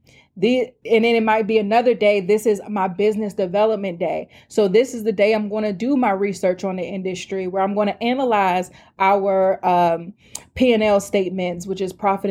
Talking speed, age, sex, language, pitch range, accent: 190 wpm, 20-39, female, English, 190-235 Hz, American